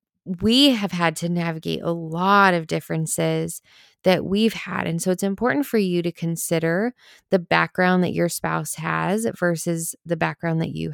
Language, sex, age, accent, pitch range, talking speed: English, female, 20-39, American, 165-200 Hz, 170 wpm